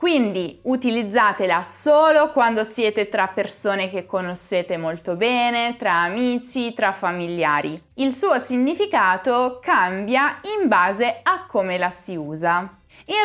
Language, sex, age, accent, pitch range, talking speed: Italian, female, 20-39, native, 195-290 Hz, 120 wpm